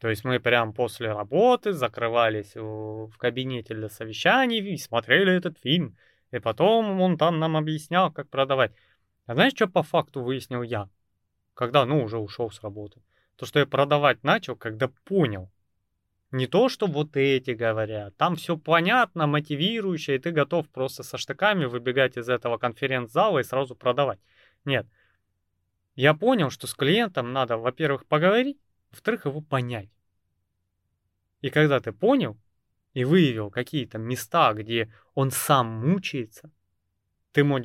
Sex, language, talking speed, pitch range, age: male, Russian, 145 wpm, 110-155 Hz, 20-39